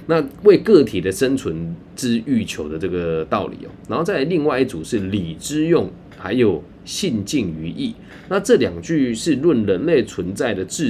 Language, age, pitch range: Chinese, 20-39, 90-130 Hz